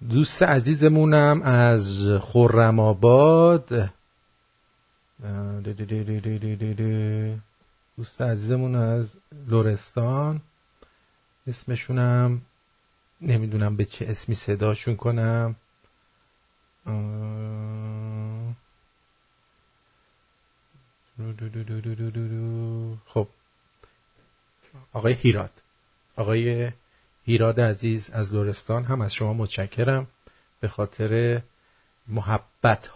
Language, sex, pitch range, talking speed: English, male, 110-145 Hz, 55 wpm